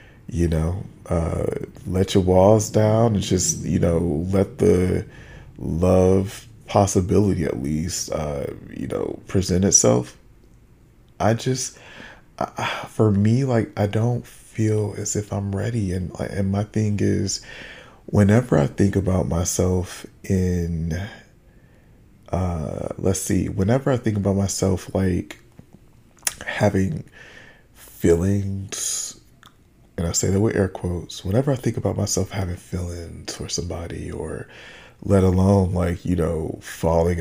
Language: English